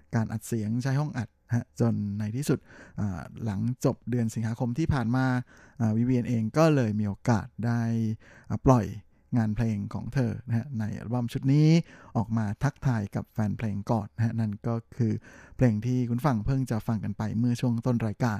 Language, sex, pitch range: Thai, male, 110-130 Hz